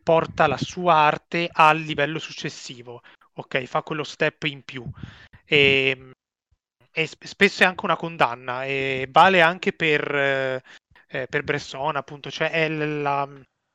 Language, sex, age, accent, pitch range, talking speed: Italian, male, 20-39, native, 135-165 Hz, 140 wpm